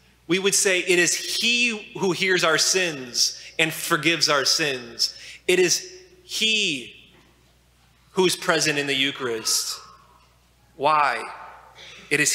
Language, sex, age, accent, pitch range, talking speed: English, male, 20-39, American, 140-180 Hz, 125 wpm